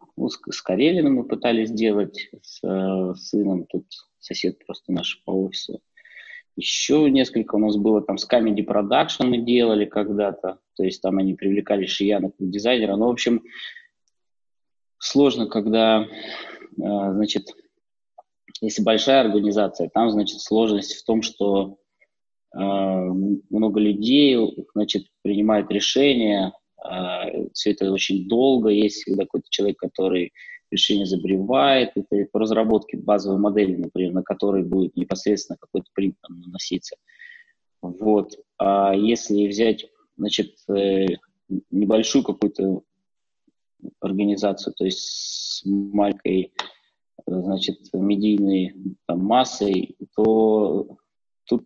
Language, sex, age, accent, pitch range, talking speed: Russian, male, 20-39, native, 95-110 Hz, 110 wpm